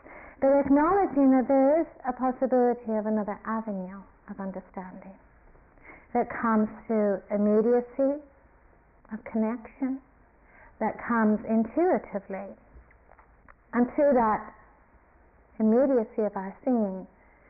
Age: 40-59